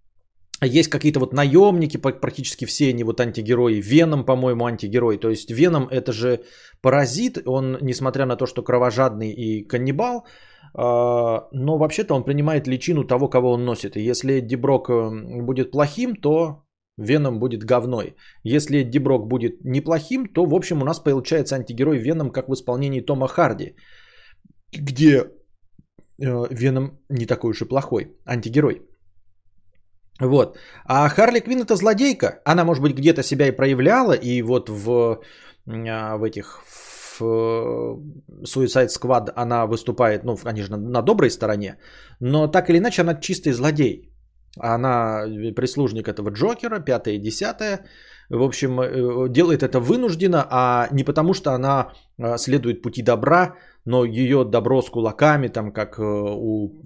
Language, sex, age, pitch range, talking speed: Bulgarian, male, 20-39, 115-145 Hz, 140 wpm